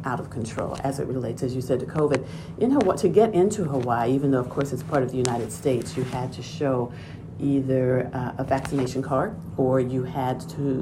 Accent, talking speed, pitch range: American, 220 wpm, 125-145 Hz